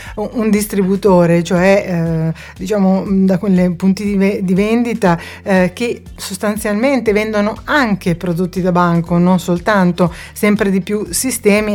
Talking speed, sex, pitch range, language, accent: 135 wpm, female, 185-230 Hz, Italian, native